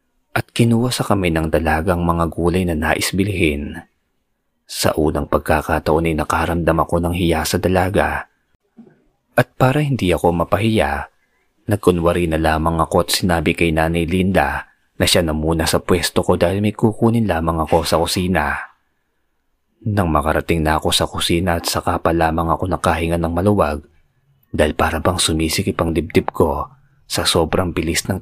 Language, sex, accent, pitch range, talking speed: Filipino, male, native, 80-100 Hz, 150 wpm